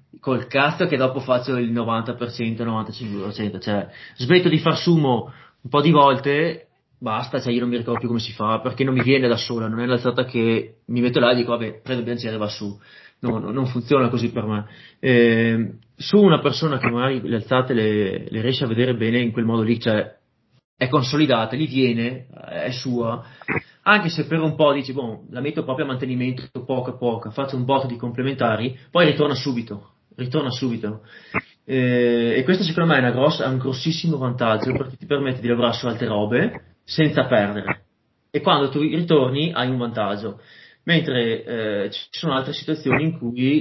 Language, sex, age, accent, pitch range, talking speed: Italian, male, 30-49, native, 115-140 Hz, 195 wpm